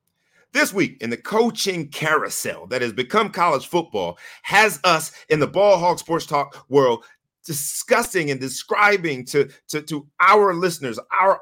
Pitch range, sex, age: 155-225 Hz, male, 40-59